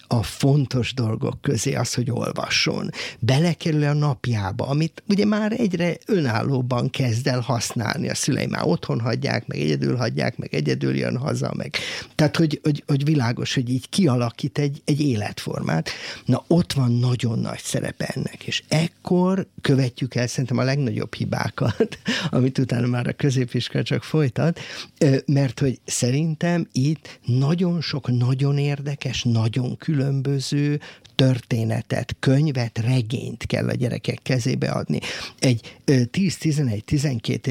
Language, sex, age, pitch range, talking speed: Hungarian, male, 50-69, 120-150 Hz, 135 wpm